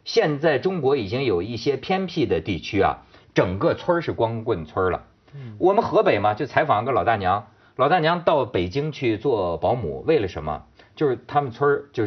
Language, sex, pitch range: Chinese, male, 120-185 Hz